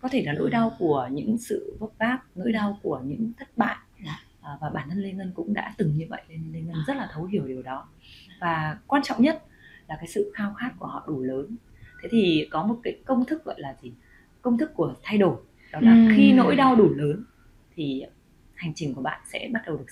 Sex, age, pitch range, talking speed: female, 20-39, 155-230 Hz, 240 wpm